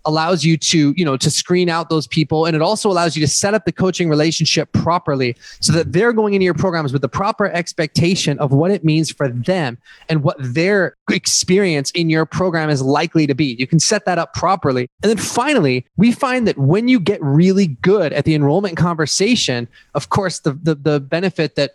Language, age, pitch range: English, 20-39, 145-175 Hz